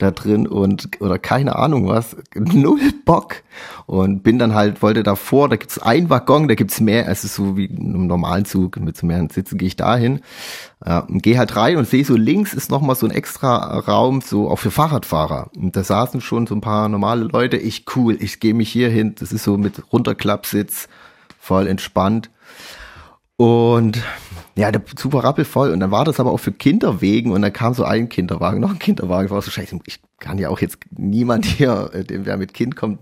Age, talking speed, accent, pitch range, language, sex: 30-49, 220 wpm, German, 100-130 Hz, German, male